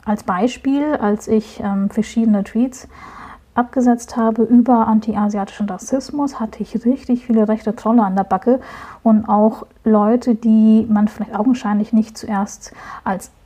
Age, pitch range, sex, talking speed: 30-49, 210-235 Hz, female, 140 wpm